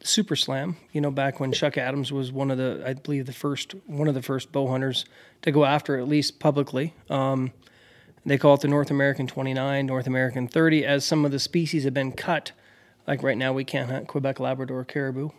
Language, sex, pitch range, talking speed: English, male, 135-150 Hz, 220 wpm